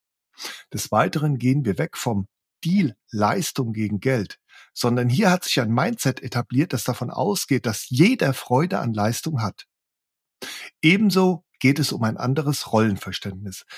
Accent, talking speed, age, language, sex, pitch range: German, 145 wpm, 50-69, German, male, 110-160 Hz